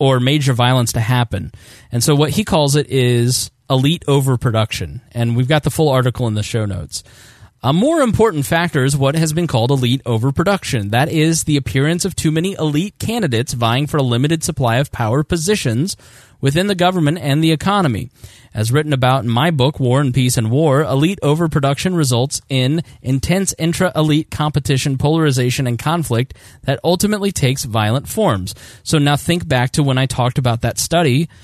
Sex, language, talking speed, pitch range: male, English, 180 wpm, 120-155 Hz